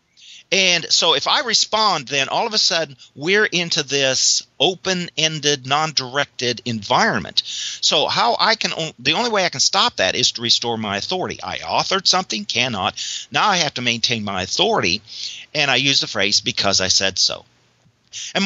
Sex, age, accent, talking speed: male, 50-69, American, 180 wpm